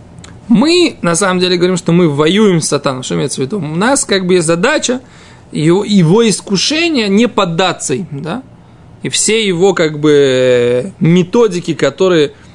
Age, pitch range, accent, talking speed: 20-39, 155-205 Hz, native, 160 wpm